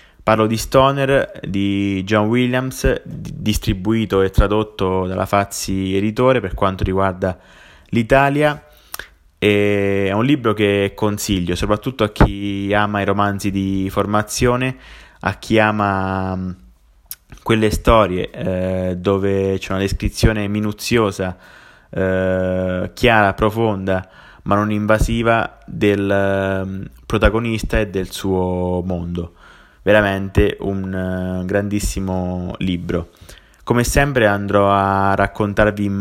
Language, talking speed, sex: Italian, 105 wpm, male